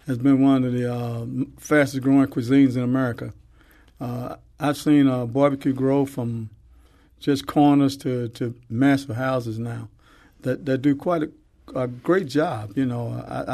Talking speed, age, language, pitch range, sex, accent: 160 wpm, 50-69, English, 120-140 Hz, male, American